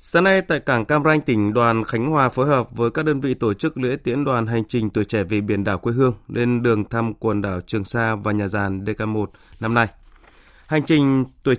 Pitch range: 105-130 Hz